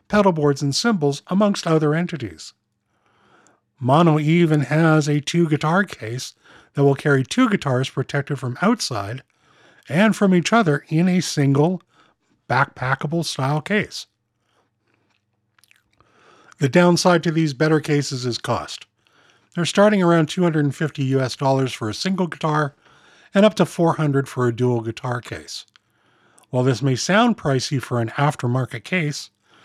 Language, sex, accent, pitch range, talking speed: English, male, American, 125-180 Hz, 130 wpm